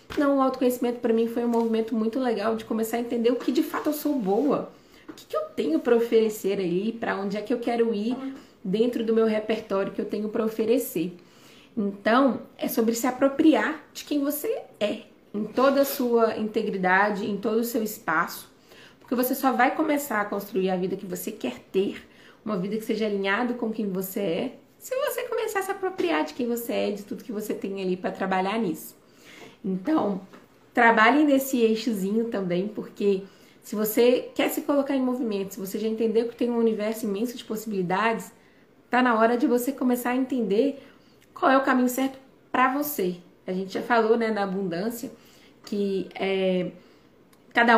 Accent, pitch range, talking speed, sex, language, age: Brazilian, 210-250 Hz, 195 wpm, female, Portuguese, 20-39